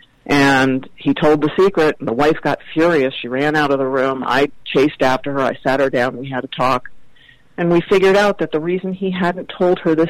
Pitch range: 140-175 Hz